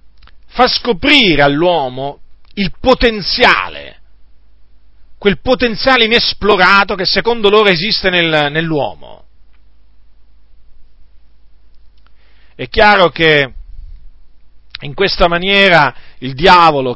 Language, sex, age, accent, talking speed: Italian, male, 40-59, native, 80 wpm